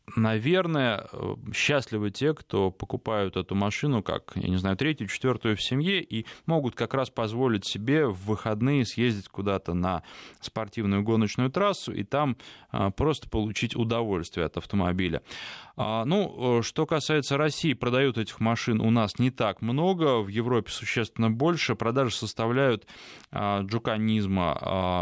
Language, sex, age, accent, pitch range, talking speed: Russian, male, 20-39, native, 100-120 Hz, 130 wpm